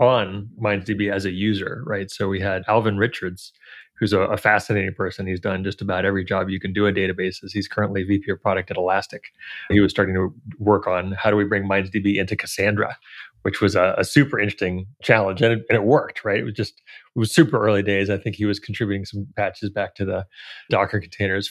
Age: 30-49